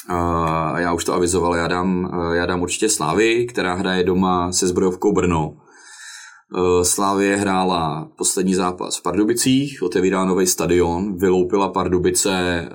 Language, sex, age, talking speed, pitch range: Czech, male, 20-39, 125 wpm, 85-95 Hz